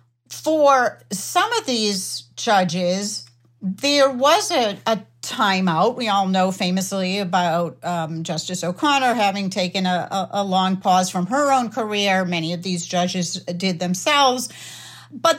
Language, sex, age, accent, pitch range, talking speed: English, female, 60-79, American, 180-230 Hz, 135 wpm